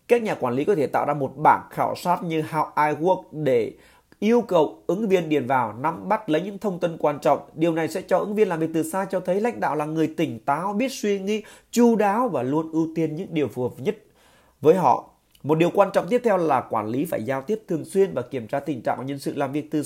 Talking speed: 270 wpm